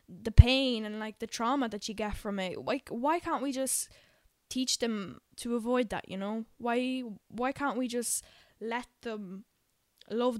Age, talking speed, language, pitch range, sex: 10-29, 180 wpm, English, 205-240 Hz, female